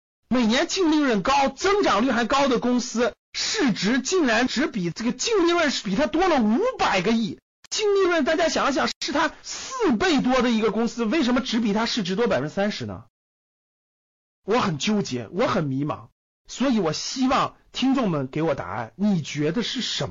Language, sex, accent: Chinese, male, native